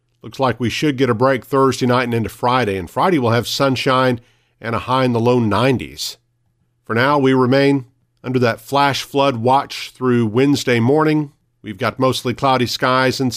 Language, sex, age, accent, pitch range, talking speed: English, male, 50-69, American, 115-135 Hz, 190 wpm